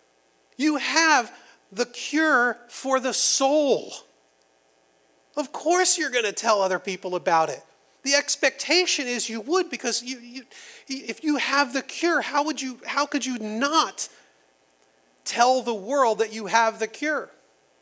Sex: male